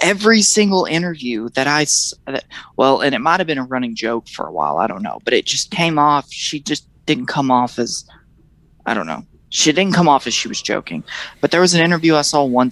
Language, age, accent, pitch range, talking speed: English, 20-39, American, 135-195 Hz, 250 wpm